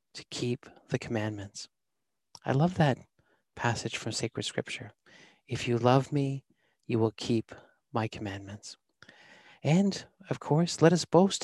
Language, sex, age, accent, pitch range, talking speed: English, male, 40-59, American, 115-145 Hz, 135 wpm